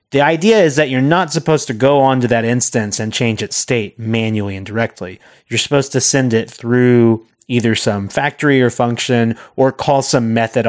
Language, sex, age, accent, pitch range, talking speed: English, male, 30-49, American, 110-135 Hz, 190 wpm